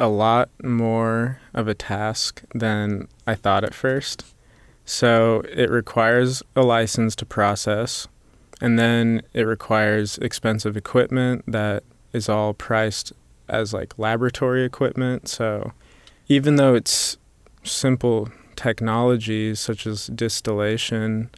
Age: 20-39